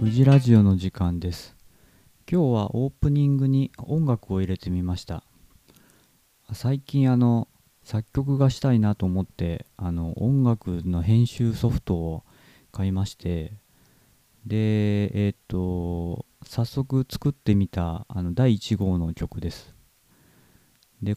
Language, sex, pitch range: Japanese, male, 90-125 Hz